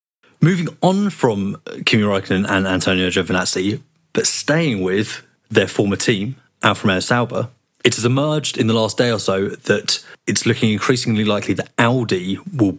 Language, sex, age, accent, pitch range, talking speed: English, male, 30-49, British, 95-120 Hz, 160 wpm